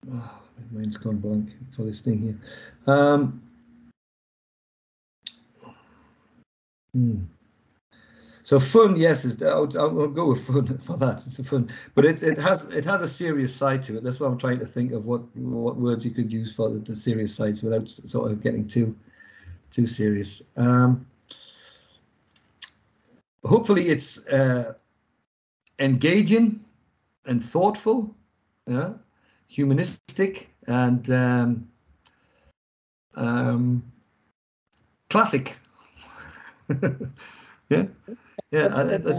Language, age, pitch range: English, 60-79, 115-145 Hz